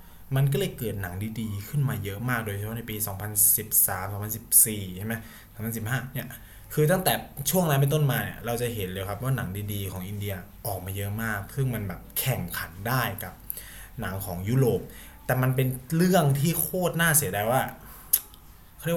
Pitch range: 100-130 Hz